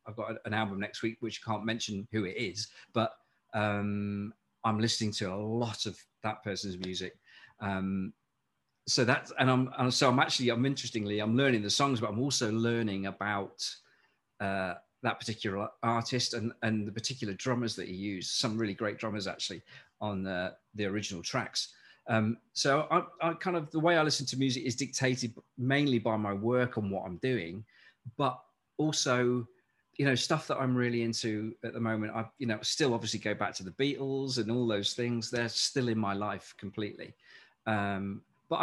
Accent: British